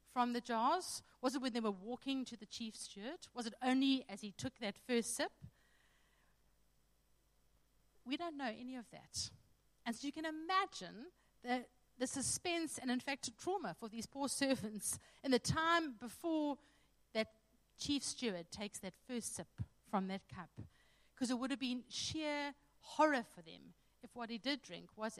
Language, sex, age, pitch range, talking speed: English, female, 50-69, 200-265 Hz, 175 wpm